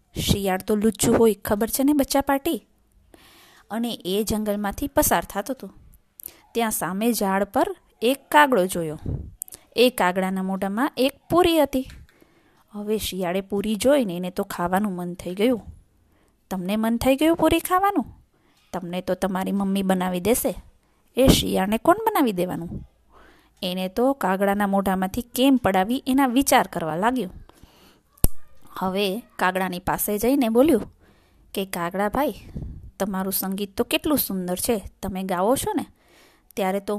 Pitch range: 185-260 Hz